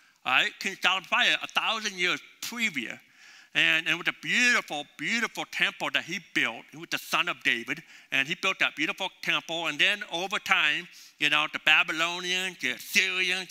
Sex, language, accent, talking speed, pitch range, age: male, English, American, 180 wpm, 175-225 Hz, 60-79